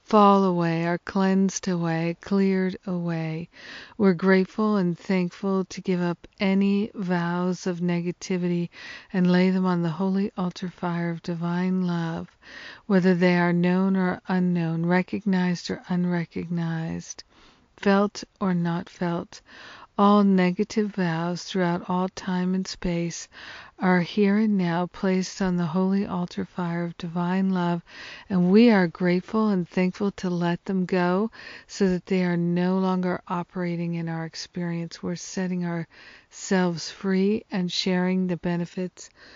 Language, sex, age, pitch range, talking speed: English, female, 50-69, 175-190 Hz, 140 wpm